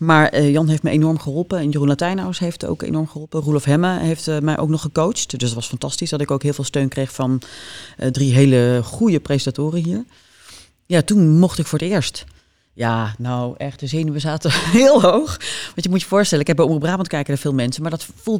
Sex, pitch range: female, 135-165 Hz